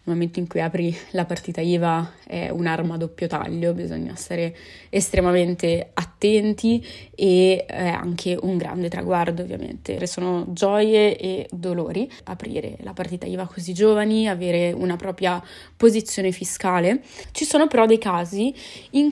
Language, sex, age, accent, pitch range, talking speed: Italian, female, 20-39, native, 180-210 Hz, 140 wpm